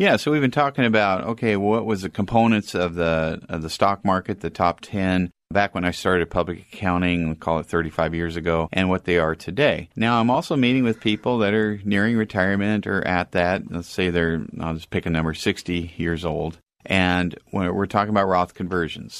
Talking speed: 210 wpm